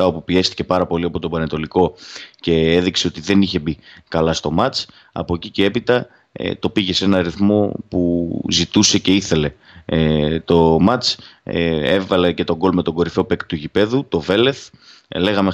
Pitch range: 80-95 Hz